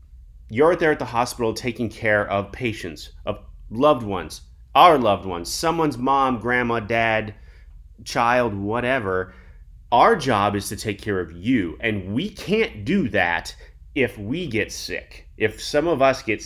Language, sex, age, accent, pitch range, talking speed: English, male, 30-49, American, 100-140 Hz, 155 wpm